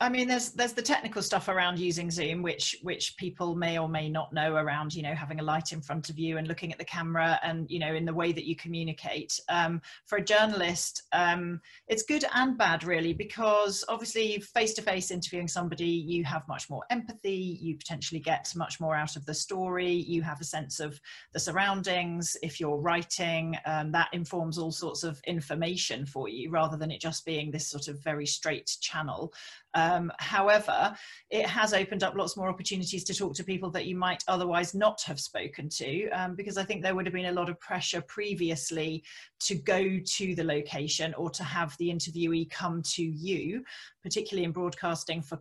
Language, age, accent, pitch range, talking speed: English, 40-59, British, 160-185 Hz, 200 wpm